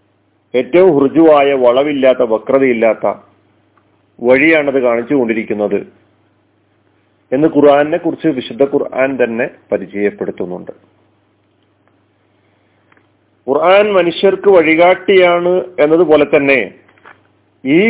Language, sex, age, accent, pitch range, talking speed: Malayalam, male, 40-59, native, 105-165 Hz, 65 wpm